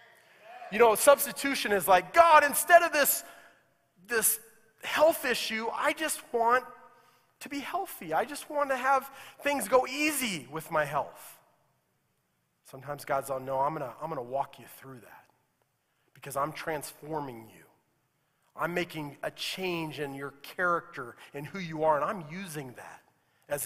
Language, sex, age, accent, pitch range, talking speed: English, male, 40-59, American, 155-250 Hz, 155 wpm